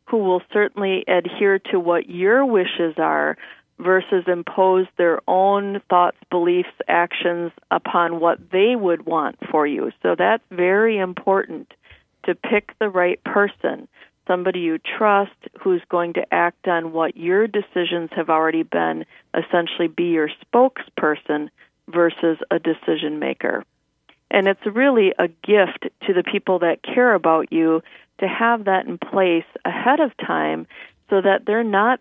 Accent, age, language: American, 40-59, English